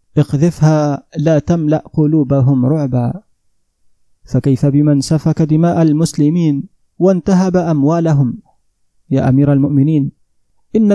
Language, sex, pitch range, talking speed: Arabic, male, 135-165 Hz, 90 wpm